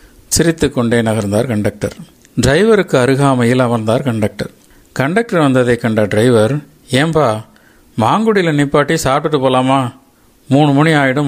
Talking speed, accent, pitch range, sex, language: 105 wpm, native, 120-145 Hz, male, Tamil